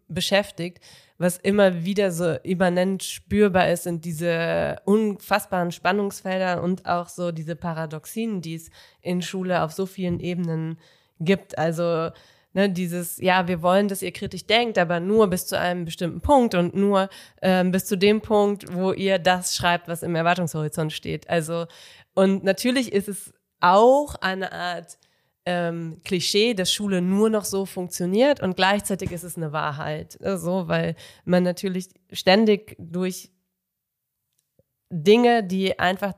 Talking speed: 145 wpm